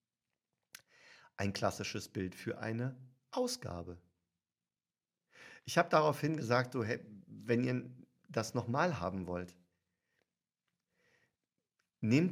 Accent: German